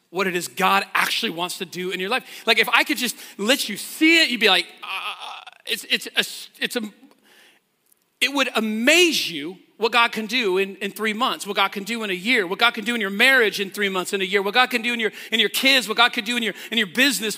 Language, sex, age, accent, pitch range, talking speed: English, male, 40-59, American, 205-280 Hz, 275 wpm